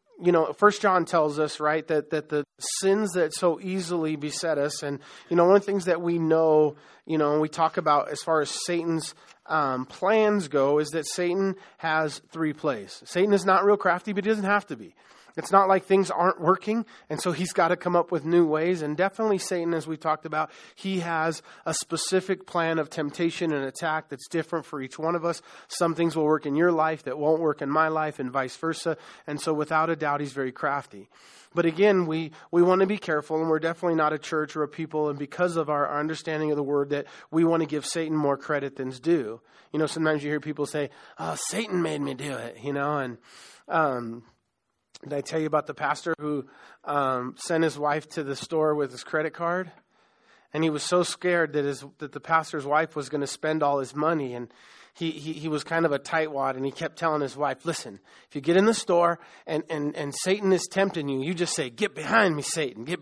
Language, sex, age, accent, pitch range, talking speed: English, male, 30-49, American, 145-170 Hz, 235 wpm